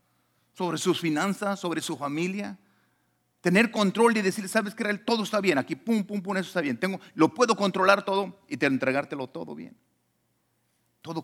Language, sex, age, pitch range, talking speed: Spanish, male, 50-69, 120-200 Hz, 165 wpm